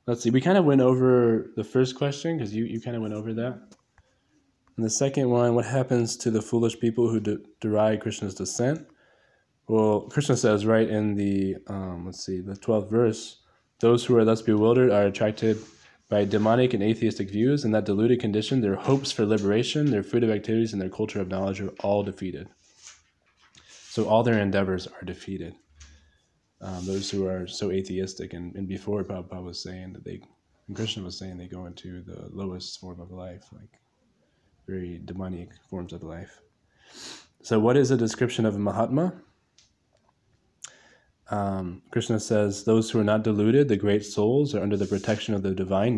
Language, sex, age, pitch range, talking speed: English, male, 20-39, 95-120 Hz, 180 wpm